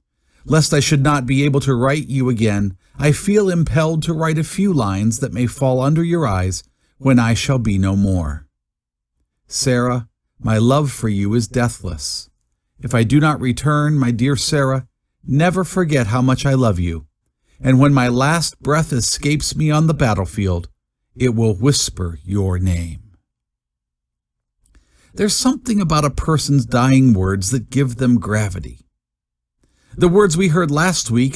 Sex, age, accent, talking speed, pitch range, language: male, 50-69, American, 160 wpm, 100-150 Hz, English